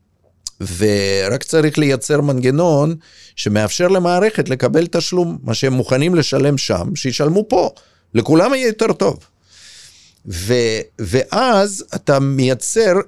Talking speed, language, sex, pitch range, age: 110 wpm, Hebrew, male, 100-160 Hz, 50-69